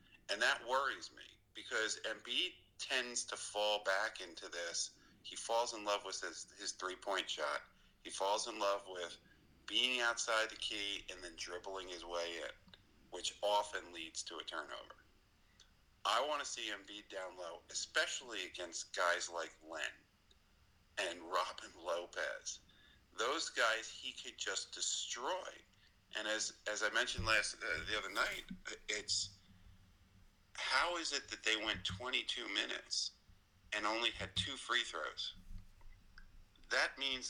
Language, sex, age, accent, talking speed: English, male, 50-69, American, 145 wpm